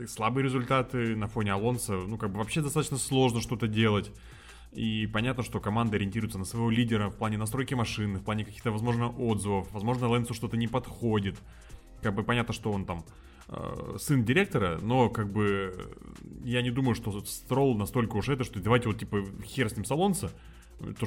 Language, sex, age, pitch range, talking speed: Russian, male, 20-39, 100-125 Hz, 180 wpm